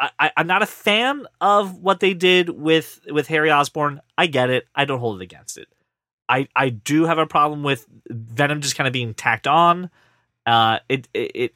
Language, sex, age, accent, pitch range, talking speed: English, male, 30-49, American, 120-165 Hz, 200 wpm